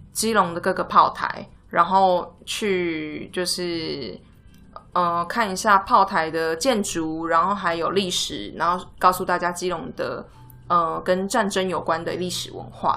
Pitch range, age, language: 170-210 Hz, 20-39, Chinese